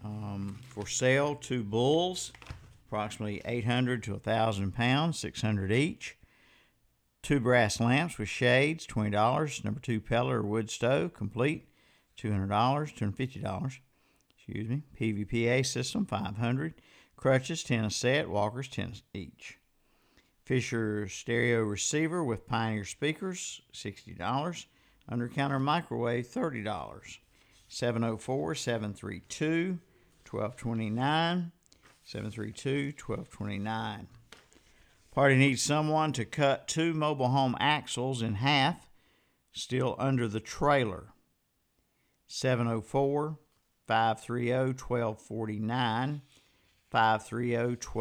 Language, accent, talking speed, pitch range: English, American, 85 wpm, 110-140 Hz